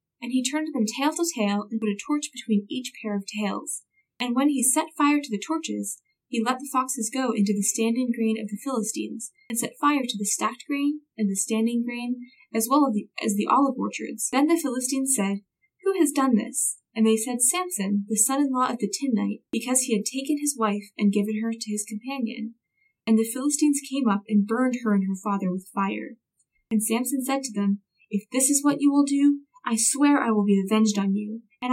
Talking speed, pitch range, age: 225 wpm, 210-275 Hz, 10-29